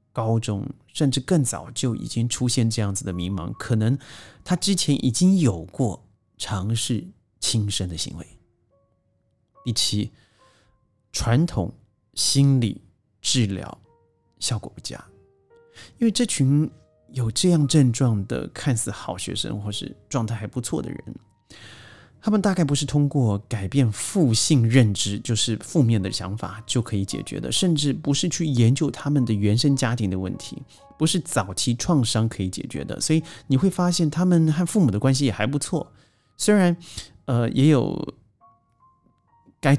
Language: Chinese